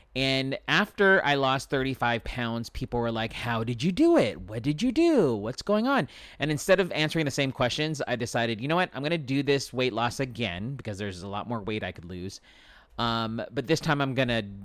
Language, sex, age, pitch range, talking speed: English, male, 30-49, 110-140 Hz, 235 wpm